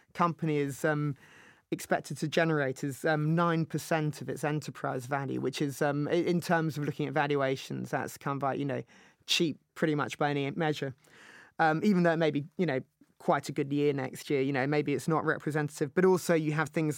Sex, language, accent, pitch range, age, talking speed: male, English, British, 145-165 Hz, 20-39, 200 wpm